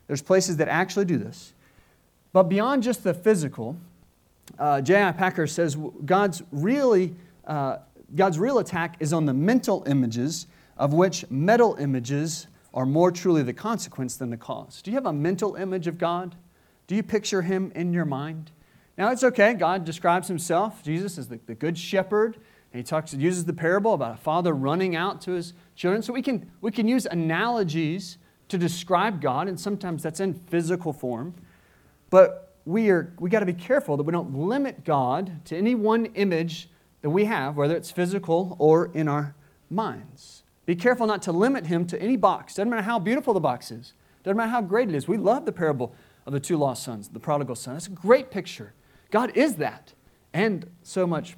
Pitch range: 150-200 Hz